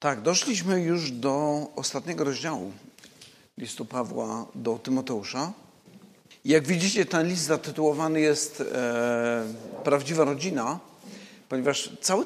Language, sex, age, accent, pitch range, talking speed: Polish, male, 50-69, native, 135-165 Hz, 100 wpm